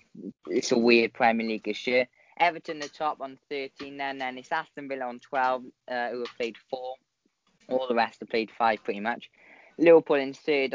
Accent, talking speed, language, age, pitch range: British, 190 wpm, English, 10-29, 115-135 Hz